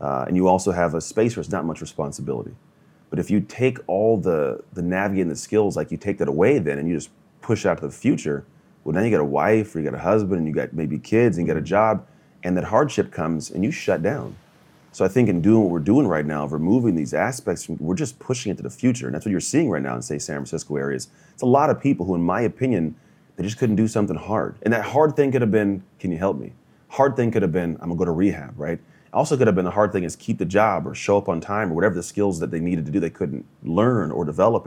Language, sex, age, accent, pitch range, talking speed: English, male, 30-49, American, 80-105 Hz, 285 wpm